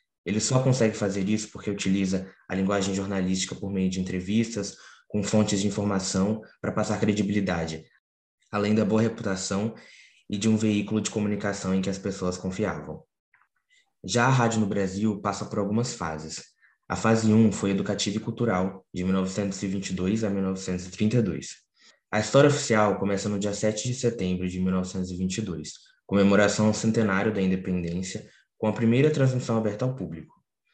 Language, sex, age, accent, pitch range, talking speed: Portuguese, male, 20-39, Brazilian, 95-110 Hz, 155 wpm